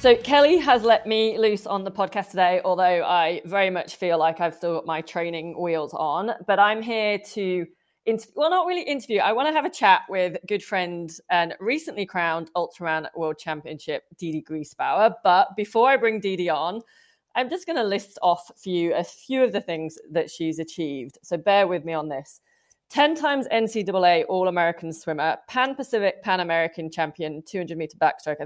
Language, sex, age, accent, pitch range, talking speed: English, female, 20-39, British, 165-225 Hz, 185 wpm